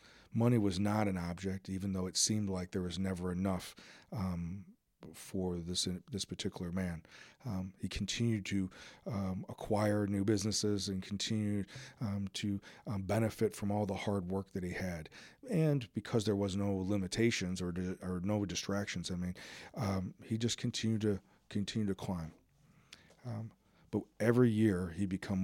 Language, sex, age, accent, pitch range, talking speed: English, male, 40-59, American, 90-105 Hz, 165 wpm